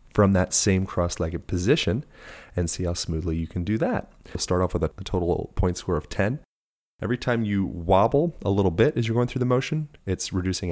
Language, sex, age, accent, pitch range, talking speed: English, male, 30-49, American, 85-95 Hz, 215 wpm